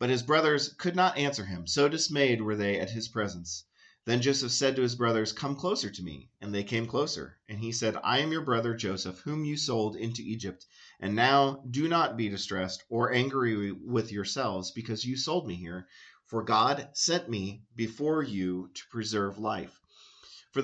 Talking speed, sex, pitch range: 190 wpm, male, 105-140 Hz